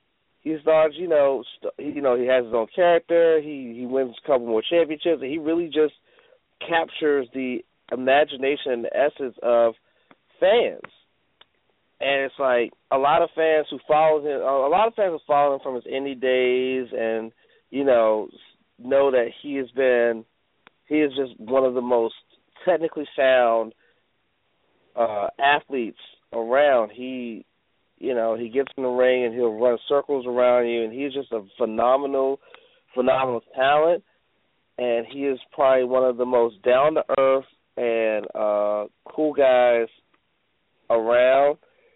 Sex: male